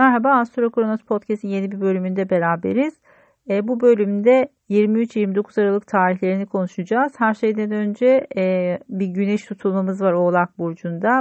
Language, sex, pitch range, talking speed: Turkish, female, 185-230 Hz, 135 wpm